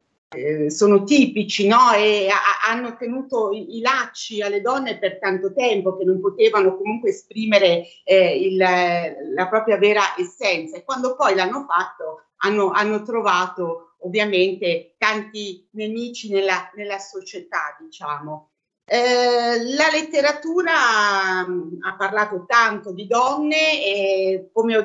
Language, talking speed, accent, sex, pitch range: Italian, 130 wpm, native, female, 185-230 Hz